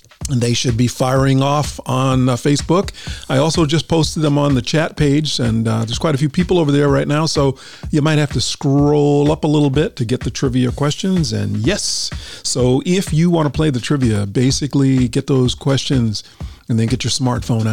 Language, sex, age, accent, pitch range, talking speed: English, male, 40-59, American, 115-150 Hz, 215 wpm